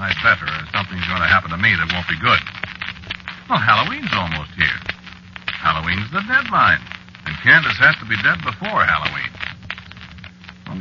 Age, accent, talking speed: 60-79, American, 160 wpm